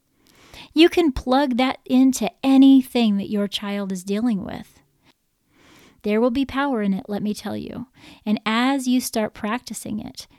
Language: English